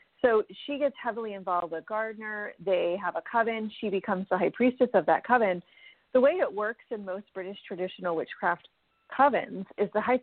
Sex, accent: female, American